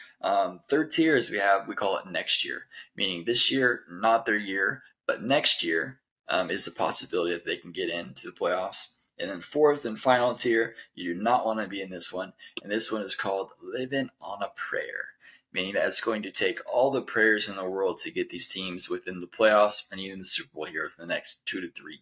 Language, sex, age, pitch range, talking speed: English, male, 20-39, 100-155 Hz, 235 wpm